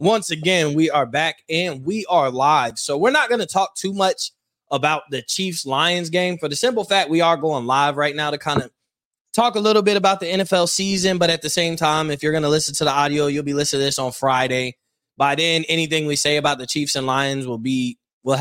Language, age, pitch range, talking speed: English, 20-39, 140-175 Hz, 240 wpm